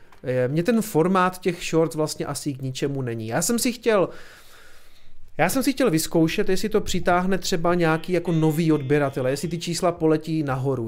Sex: male